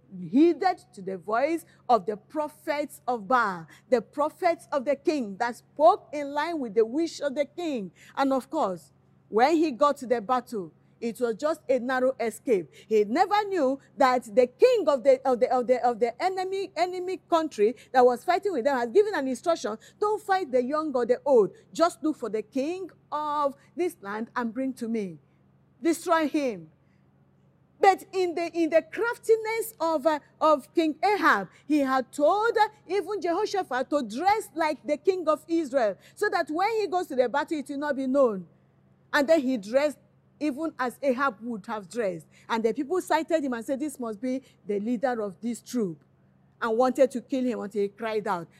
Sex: female